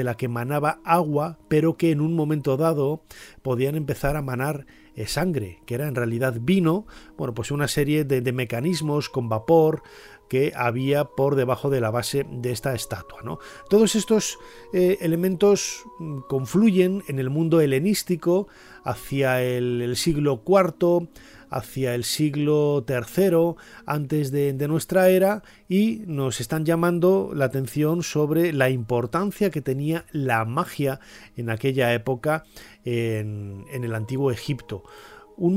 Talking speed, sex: 145 wpm, male